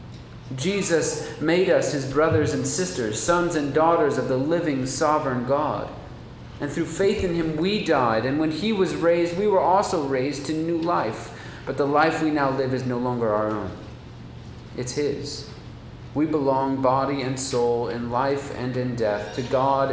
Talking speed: 180 wpm